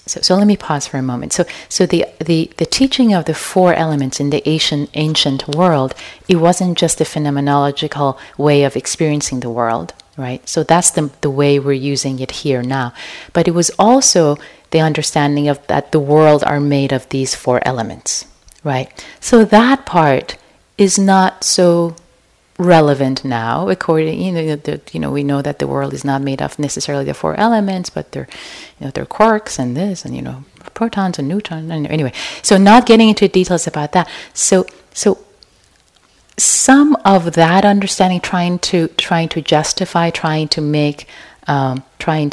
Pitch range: 140-185 Hz